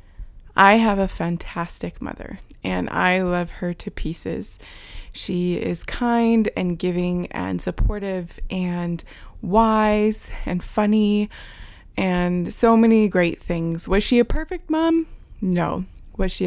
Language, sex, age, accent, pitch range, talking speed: English, female, 20-39, American, 165-200 Hz, 130 wpm